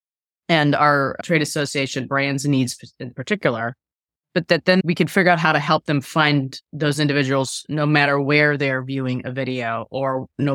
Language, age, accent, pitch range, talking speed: English, 20-39, American, 135-155 Hz, 175 wpm